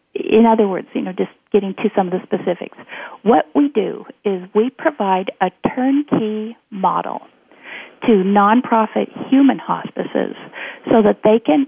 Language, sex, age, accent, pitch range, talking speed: English, female, 40-59, American, 185-225 Hz, 150 wpm